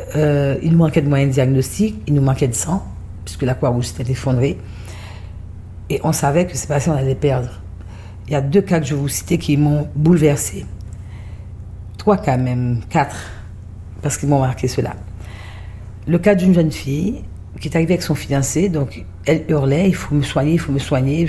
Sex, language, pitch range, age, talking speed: female, French, 95-145 Hz, 50-69, 195 wpm